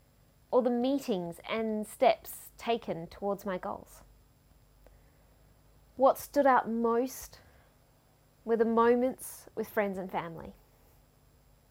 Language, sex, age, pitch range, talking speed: English, female, 30-49, 185-235 Hz, 95 wpm